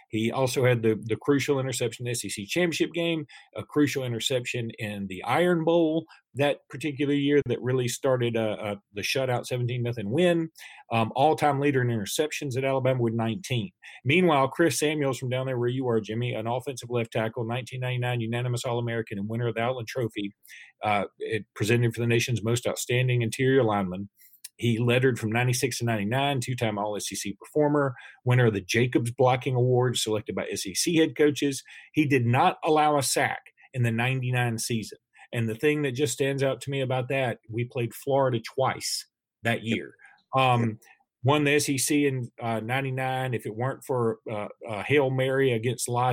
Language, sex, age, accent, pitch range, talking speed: English, male, 40-59, American, 115-135 Hz, 180 wpm